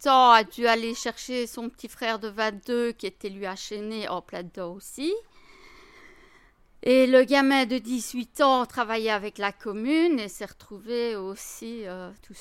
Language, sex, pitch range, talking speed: French, female, 195-255 Hz, 165 wpm